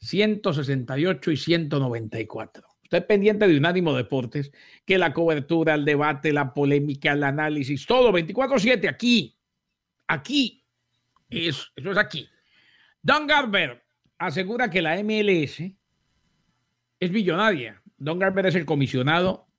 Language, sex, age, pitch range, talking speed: English, male, 50-69, 140-195 Hz, 125 wpm